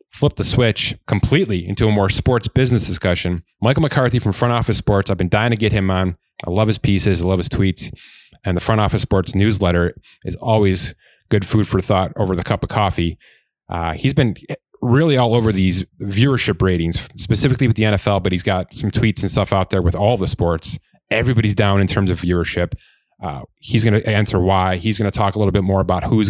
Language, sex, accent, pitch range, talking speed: English, male, American, 95-115 Hz, 220 wpm